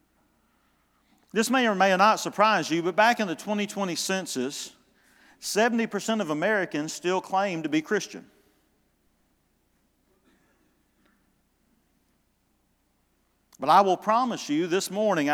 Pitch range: 175-220 Hz